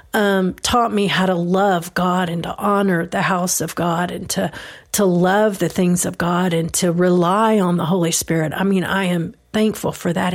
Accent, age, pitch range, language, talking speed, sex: American, 40-59, 175-210 Hz, English, 210 wpm, female